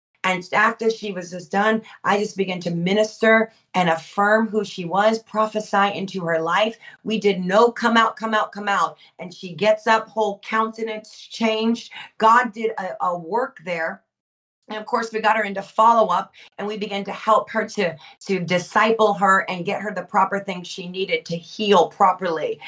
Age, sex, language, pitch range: 40-59, female, English, 185-230 Hz